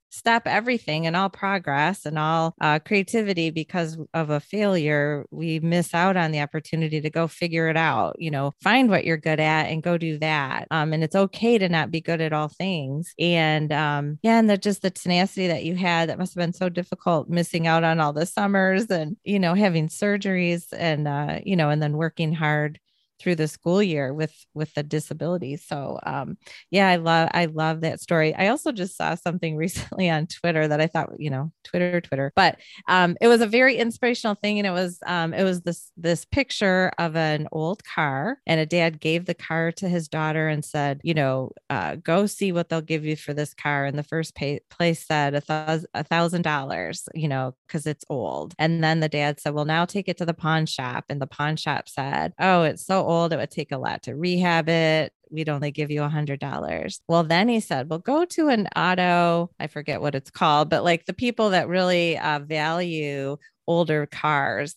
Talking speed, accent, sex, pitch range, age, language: 220 wpm, American, female, 155-180 Hz, 30-49, English